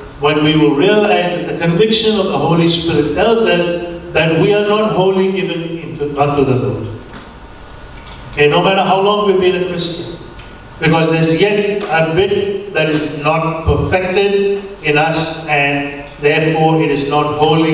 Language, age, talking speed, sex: English, 60-79, 160 wpm, male